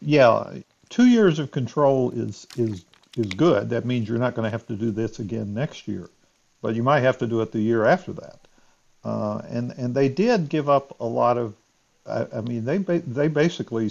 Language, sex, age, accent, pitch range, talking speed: English, male, 50-69, American, 110-135 Hz, 210 wpm